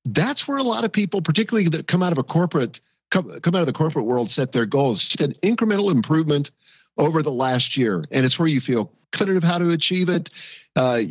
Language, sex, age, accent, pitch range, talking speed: English, male, 50-69, American, 130-180 Hz, 220 wpm